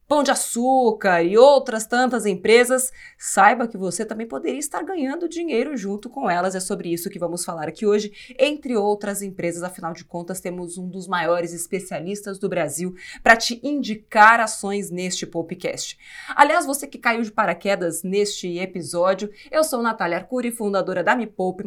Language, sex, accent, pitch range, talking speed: Portuguese, female, Brazilian, 185-250 Hz, 170 wpm